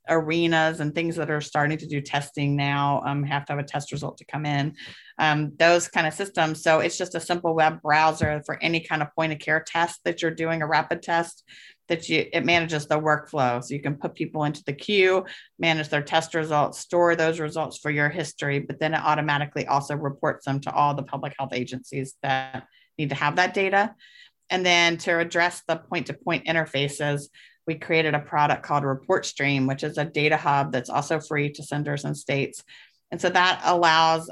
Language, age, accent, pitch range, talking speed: English, 30-49, American, 145-165 Hz, 210 wpm